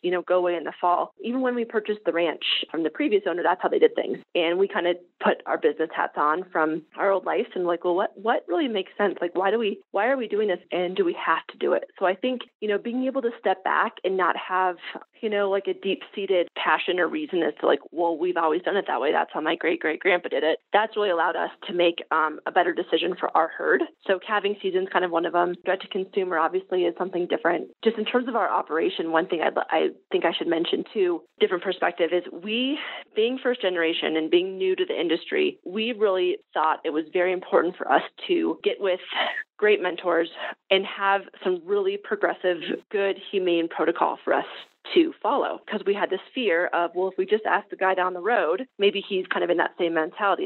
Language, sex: English, female